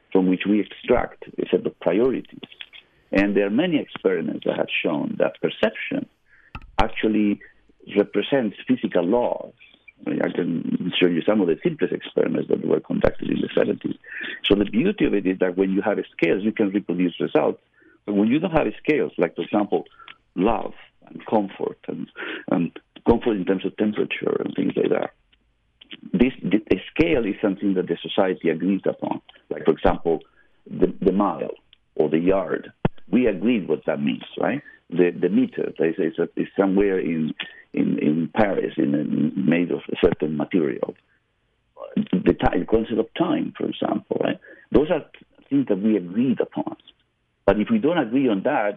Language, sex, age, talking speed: English, male, 50-69, 175 wpm